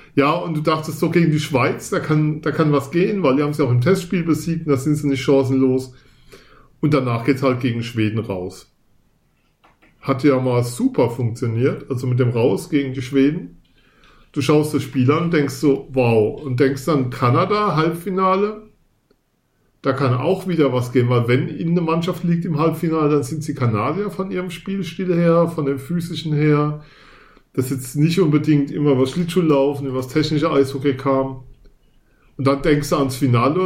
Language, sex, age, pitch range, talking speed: German, male, 40-59, 130-165 Hz, 185 wpm